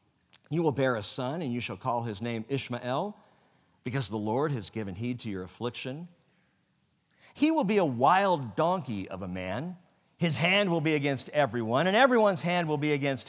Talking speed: 190 wpm